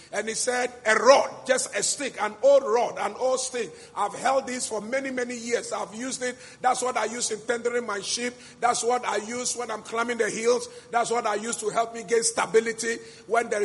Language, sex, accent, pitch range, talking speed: English, male, Nigerian, 230-310 Hz, 230 wpm